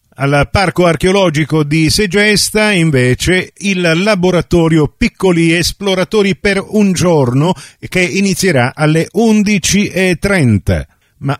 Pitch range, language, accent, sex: 130-180 Hz, Italian, native, male